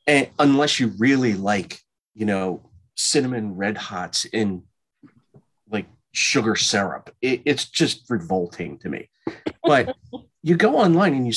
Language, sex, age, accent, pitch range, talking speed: English, male, 40-59, American, 90-125 Hz, 135 wpm